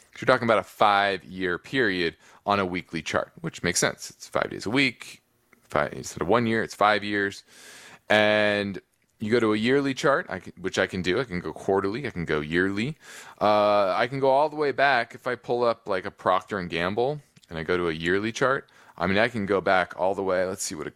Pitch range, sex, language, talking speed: 90-110 Hz, male, English, 230 wpm